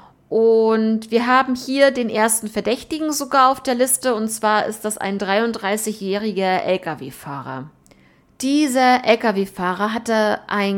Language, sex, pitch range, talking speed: German, female, 205-250 Hz, 120 wpm